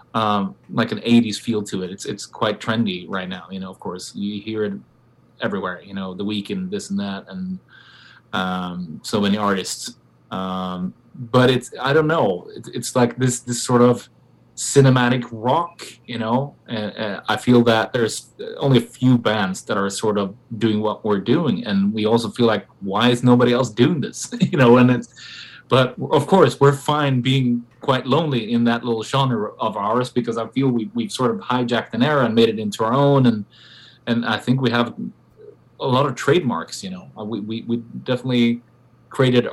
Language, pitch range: English, 110-130 Hz